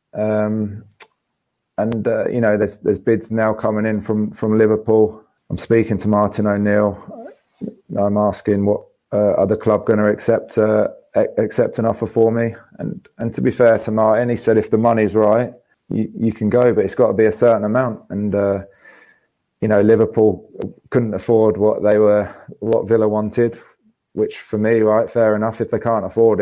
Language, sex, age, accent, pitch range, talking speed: English, male, 20-39, British, 105-115 Hz, 185 wpm